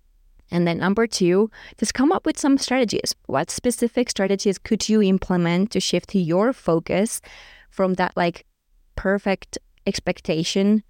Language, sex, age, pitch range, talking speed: English, female, 20-39, 170-205 Hz, 140 wpm